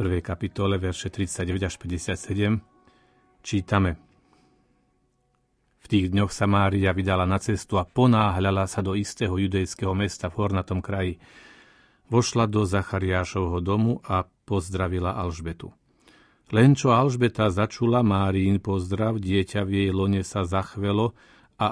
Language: Slovak